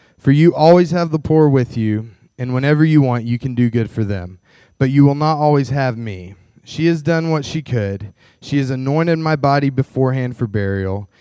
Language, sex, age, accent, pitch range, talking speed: English, male, 20-39, American, 115-140 Hz, 210 wpm